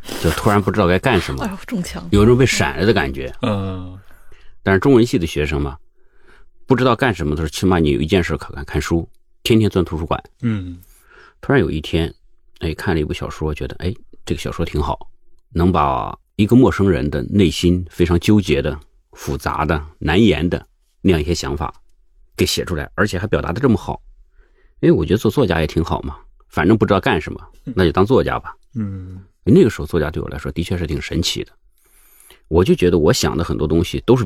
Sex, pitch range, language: male, 75-95 Hz, Chinese